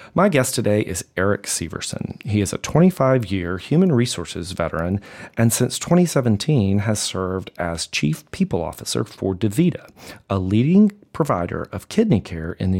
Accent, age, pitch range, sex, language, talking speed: American, 40-59, 90-115 Hz, male, English, 150 wpm